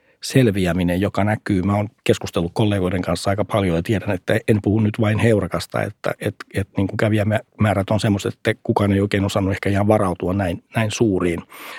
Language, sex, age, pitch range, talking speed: Finnish, male, 60-79, 100-115 Hz, 190 wpm